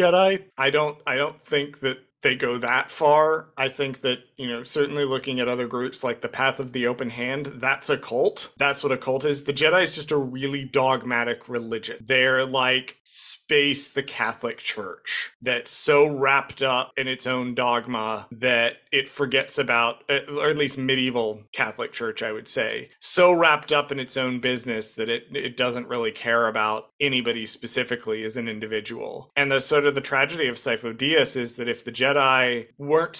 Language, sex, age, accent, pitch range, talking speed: English, male, 30-49, American, 125-140 Hz, 190 wpm